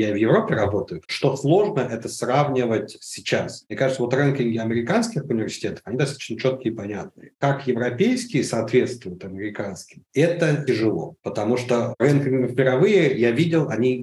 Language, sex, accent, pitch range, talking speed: Russian, male, native, 105-135 Hz, 145 wpm